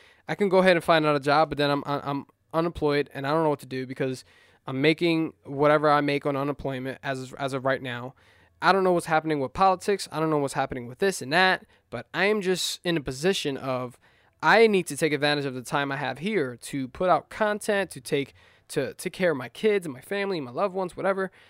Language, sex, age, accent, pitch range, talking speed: English, male, 20-39, American, 135-165 Hz, 250 wpm